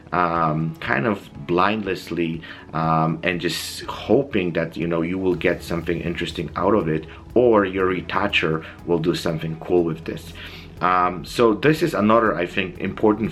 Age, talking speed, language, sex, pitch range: 30-49, 160 wpm, English, male, 85-105 Hz